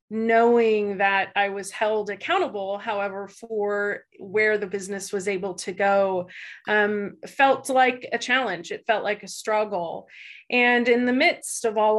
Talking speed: 155 wpm